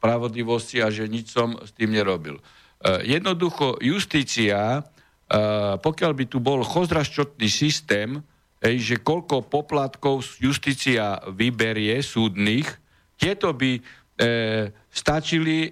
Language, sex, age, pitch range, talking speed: Slovak, male, 60-79, 120-165 Hz, 90 wpm